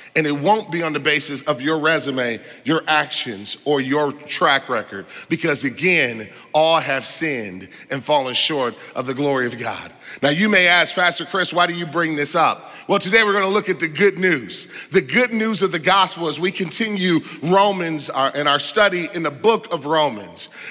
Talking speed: 195 wpm